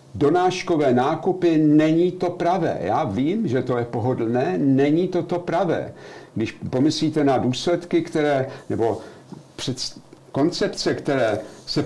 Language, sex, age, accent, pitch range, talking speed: Czech, male, 50-69, native, 120-170 Hz, 125 wpm